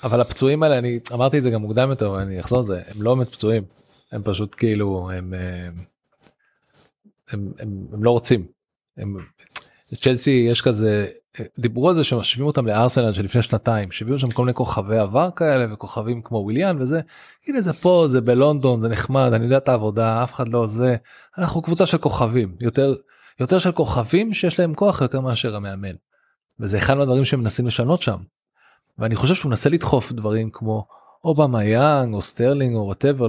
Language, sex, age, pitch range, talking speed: Hebrew, male, 20-39, 110-145 Hz, 170 wpm